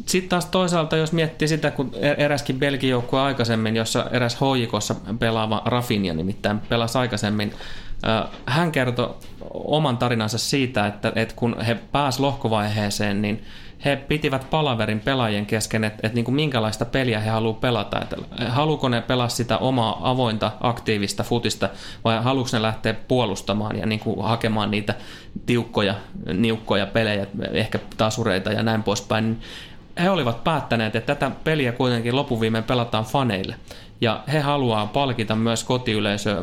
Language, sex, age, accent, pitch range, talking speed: Finnish, male, 20-39, native, 110-140 Hz, 130 wpm